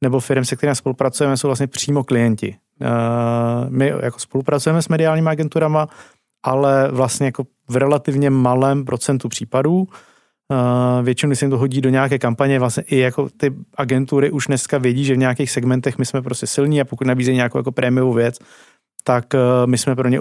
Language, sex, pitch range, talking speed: Czech, male, 125-140 Hz, 180 wpm